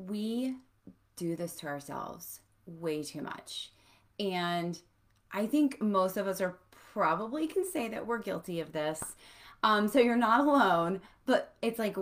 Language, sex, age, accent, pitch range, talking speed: English, female, 30-49, American, 185-235 Hz, 155 wpm